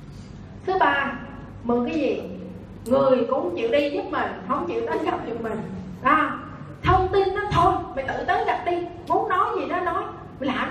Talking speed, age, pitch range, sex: 190 wpm, 20-39, 235-335 Hz, female